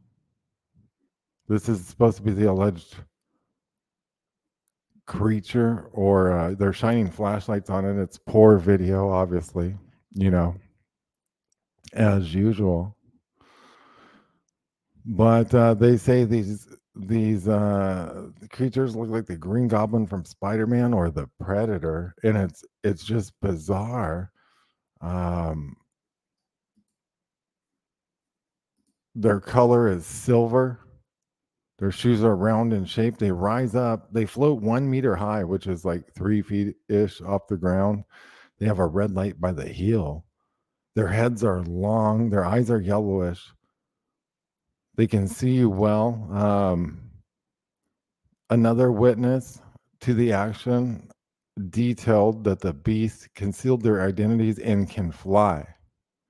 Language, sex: English, male